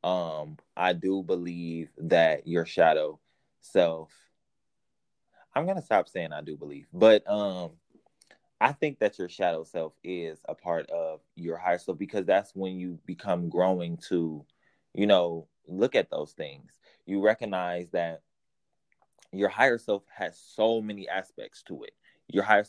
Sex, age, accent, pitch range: male, 20-39, American, 85-100 Hz